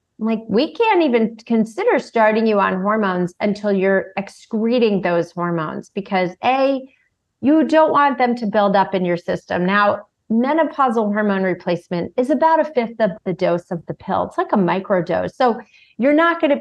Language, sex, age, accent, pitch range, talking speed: English, female, 30-49, American, 180-235 Hz, 175 wpm